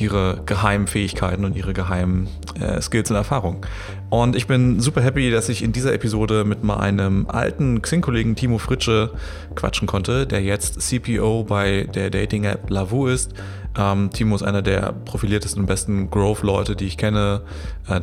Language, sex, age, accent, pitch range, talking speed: German, male, 30-49, German, 100-115 Hz, 165 wpm